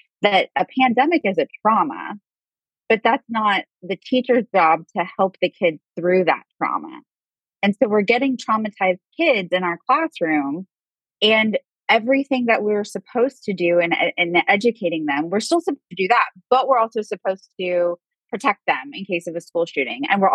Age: 20-39